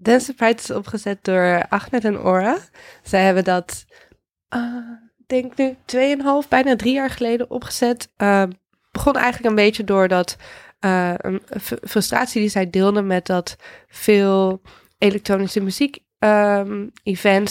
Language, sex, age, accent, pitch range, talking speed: Dutch, female, 20-39, Dutch, 185-225 Hz, 135 wpm